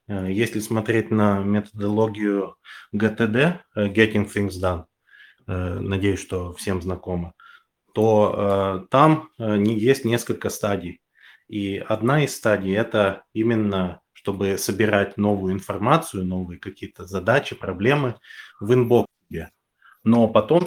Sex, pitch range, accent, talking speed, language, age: male, 95-115 Hz, native, 105 wpm, Russian, 30-49